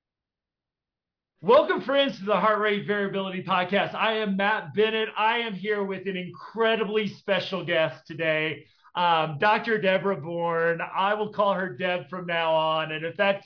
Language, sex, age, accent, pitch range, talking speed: English, male, 40-59, American, 165-210 Hz, 160 wpm